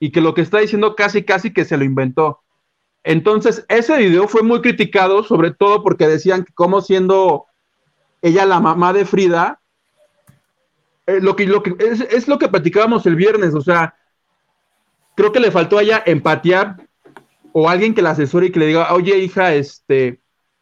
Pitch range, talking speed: 160-205 Hz, 185 wpm